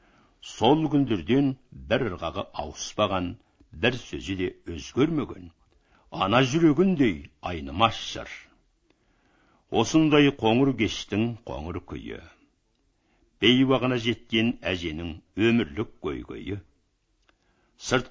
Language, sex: Russian, male